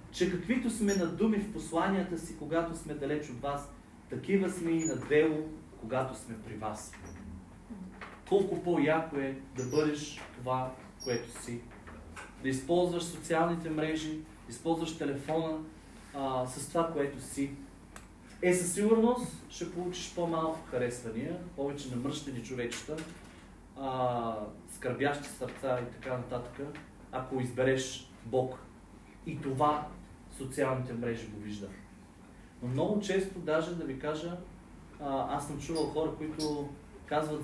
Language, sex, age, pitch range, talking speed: Bulgarian, male, 40-59, 125-165 Hz, 130 wpm